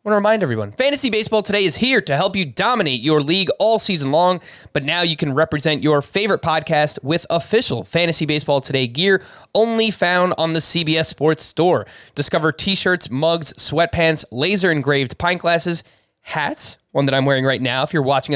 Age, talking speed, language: 20-39, 190 wpm, English